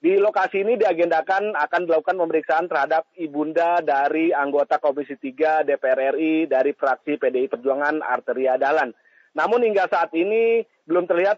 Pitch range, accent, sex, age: 150-185 Hz, native, male, 30-49